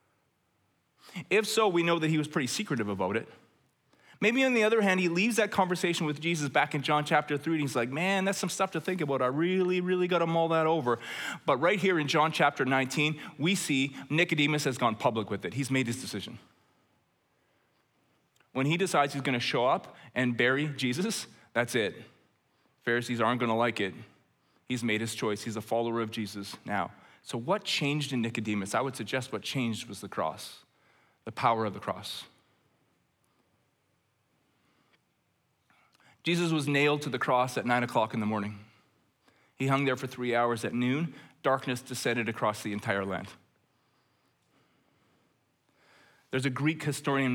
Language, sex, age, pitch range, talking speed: English, male, 20-39, 115-160 Hz, 180 wpm